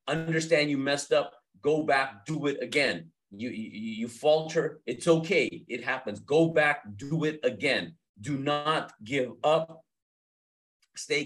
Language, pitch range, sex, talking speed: English, 115-160 Hz, male, 145 wpm